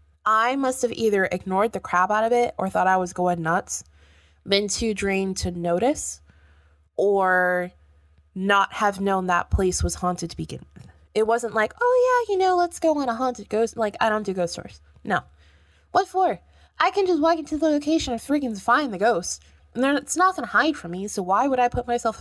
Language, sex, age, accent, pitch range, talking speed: English, female, 20-39, American, 165-245 Hz, 220 wpm